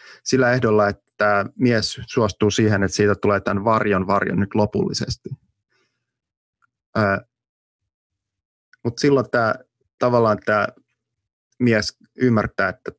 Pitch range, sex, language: 100-115 Hz, male, Finnish